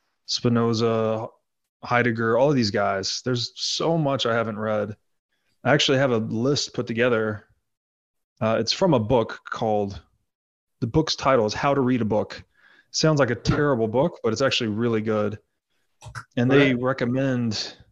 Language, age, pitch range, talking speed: English, 30-49, 110-135 Hz, 160 wpm